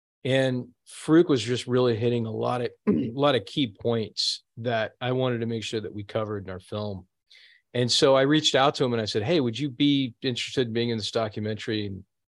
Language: English